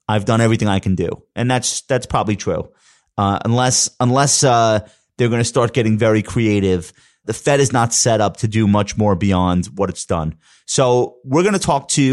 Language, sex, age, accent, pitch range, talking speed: English, male, 30-49, American, 105-125 Hz, 210 wpm